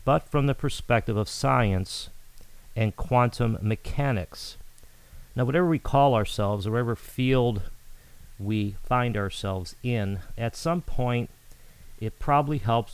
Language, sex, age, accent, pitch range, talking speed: English, male, 40-59, American, 100-125 Hz, 125 wpm